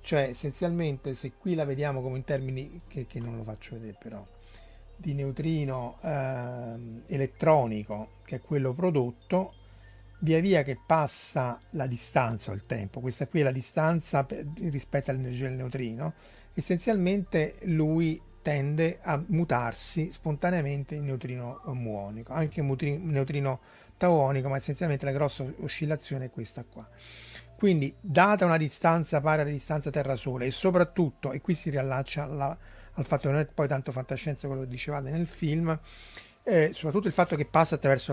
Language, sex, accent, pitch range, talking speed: Italian, male, native, 125-155 Hz, 155 wpm